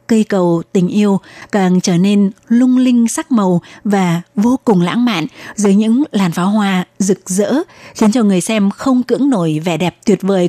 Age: 20-39